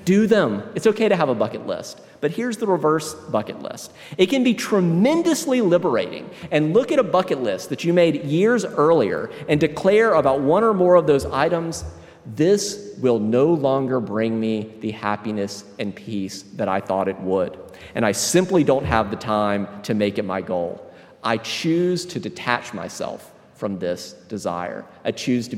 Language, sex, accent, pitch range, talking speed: English, male, American, 110-180 Hz, 185 wpm